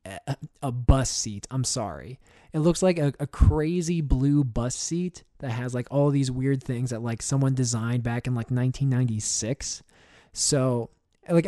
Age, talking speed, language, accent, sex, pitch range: 20-39, 165 wpm, English, American, male, 115-140 Hz